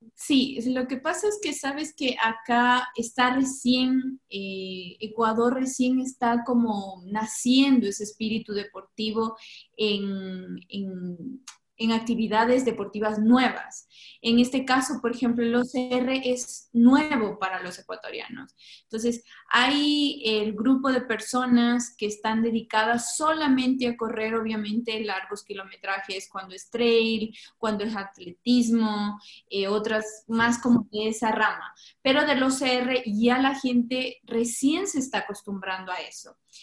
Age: 20-39